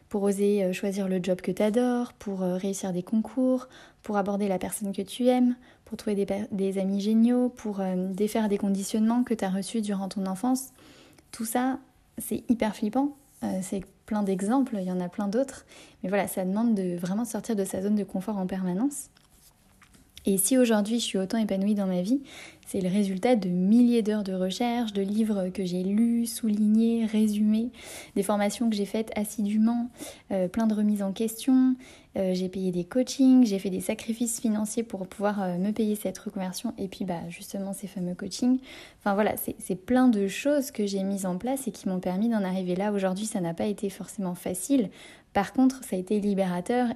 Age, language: 20-39, French